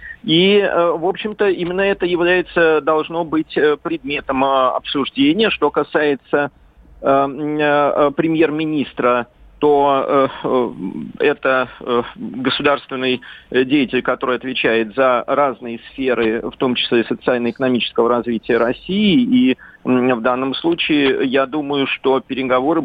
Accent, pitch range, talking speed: native, 130-160 Hz, 105 wpm